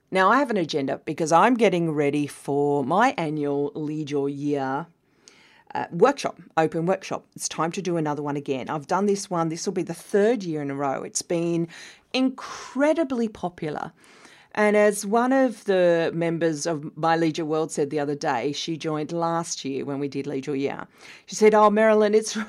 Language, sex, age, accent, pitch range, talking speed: English, female, 40-59, Australian, 155-215 Hz, 185 wpm